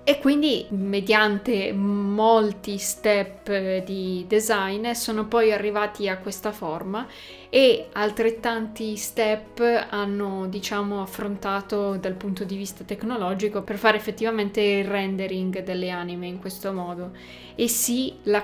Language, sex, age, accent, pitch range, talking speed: Italian, female, 20-39, native, 195-215 Hz, 120 wpm